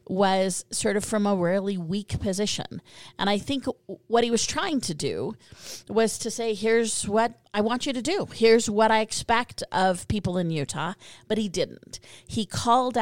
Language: English